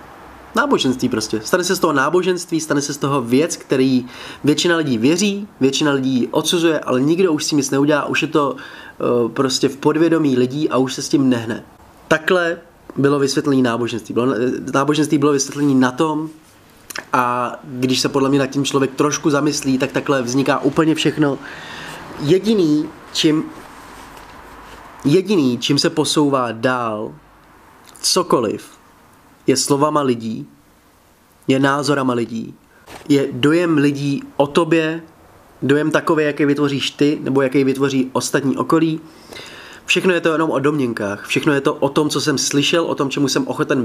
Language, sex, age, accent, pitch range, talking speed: Czech, male, 20-39, native, 130-155 Hz, 150 wpm